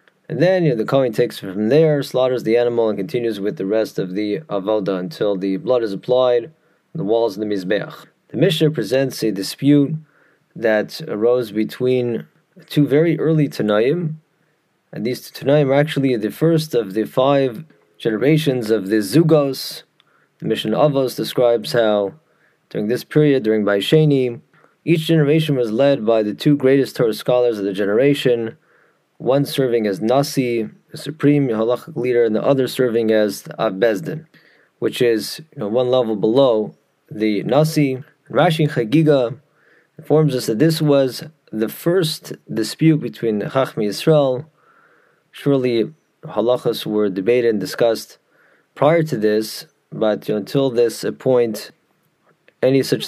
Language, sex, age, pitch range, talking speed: English, male, 30-49, 110-150 Hz, 150 wpm